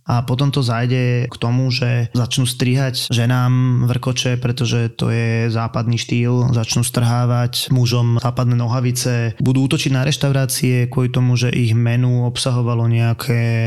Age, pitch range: 20-39, 120-125 Hz